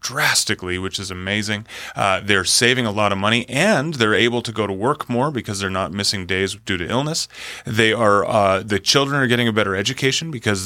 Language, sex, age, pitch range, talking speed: English, male, 30-49, 100-125 Hz, 215 wpm